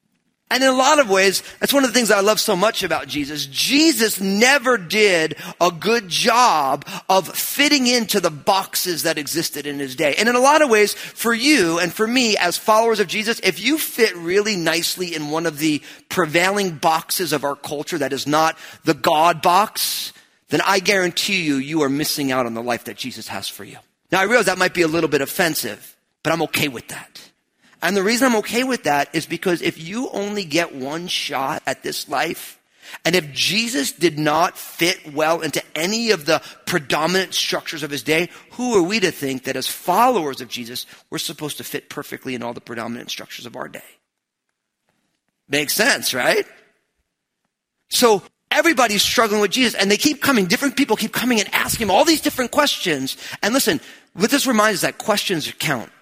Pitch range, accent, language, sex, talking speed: 155-225 Hz, American, English, male, 200 wpm